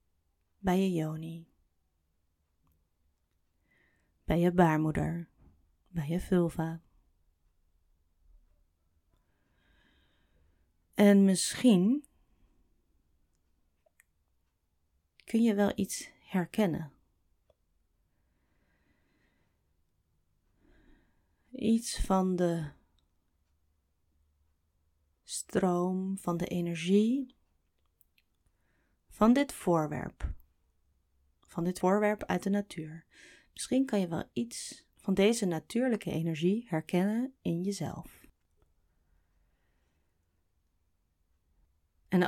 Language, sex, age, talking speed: Dutch, female, 30-49, 65 wpm